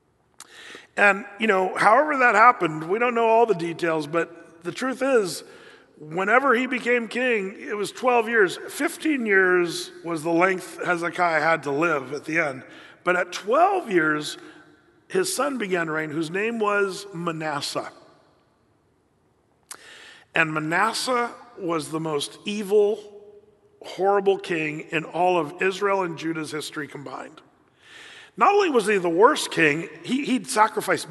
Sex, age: male, 50-69